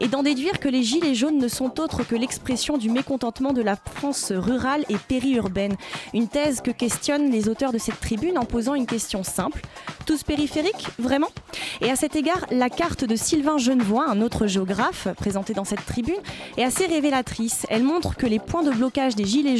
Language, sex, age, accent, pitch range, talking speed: French, female, 20-39, French, 225-285 Hz, 200 wpm